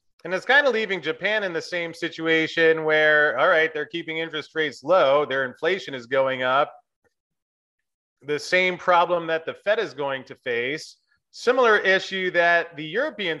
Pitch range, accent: 145-180 Hz, American